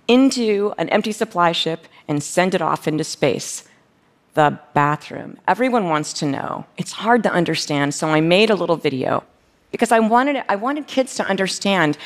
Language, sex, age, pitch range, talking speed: Arabic, female, 40-59, 165-235 Hz, 170 wpm